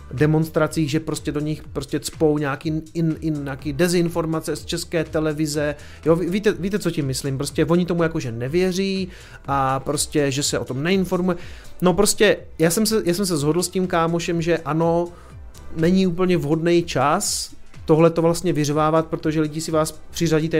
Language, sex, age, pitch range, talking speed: Czech, male, 30-49, 140-175 Hz, 180 wpm